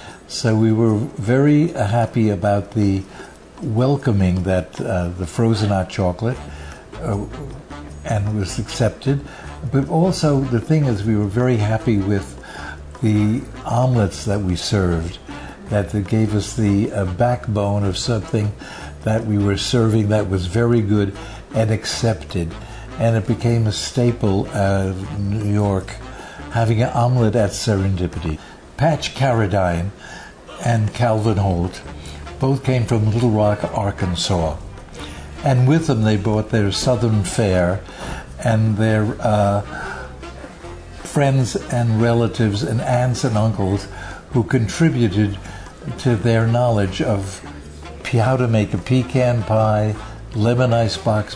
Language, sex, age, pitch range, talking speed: English, male, 60-79, 100-120 Hz, 130 wpm